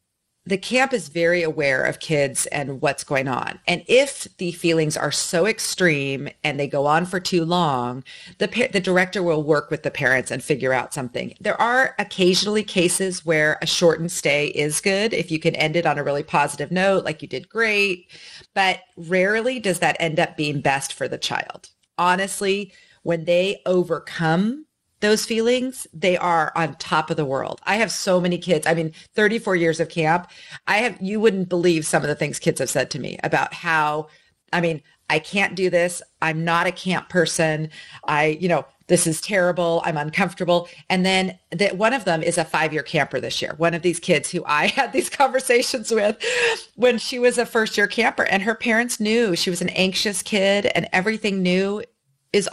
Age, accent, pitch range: 40-59, American, 160-200 Hz